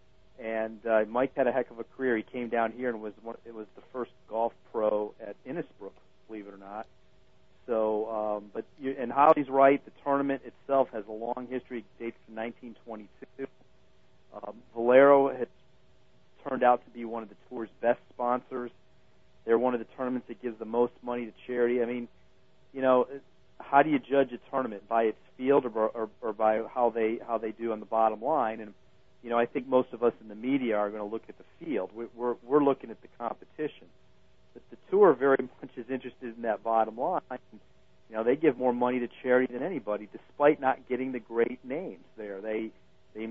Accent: American